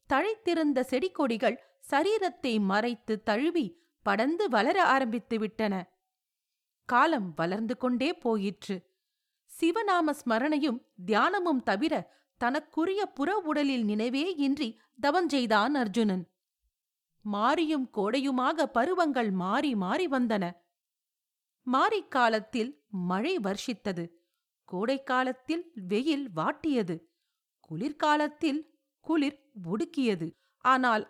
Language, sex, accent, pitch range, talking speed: Tamil, female, native, 210-310 Hz, 75 wpm